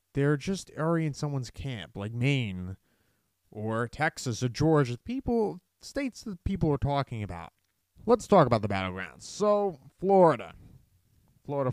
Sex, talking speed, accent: male, 140 wpm, American